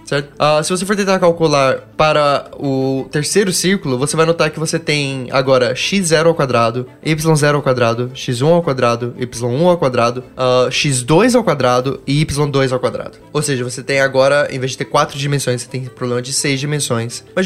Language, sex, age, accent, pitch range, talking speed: Portuguese, male, 10-29, Brazilian, 130-160 Hz, 195 wpm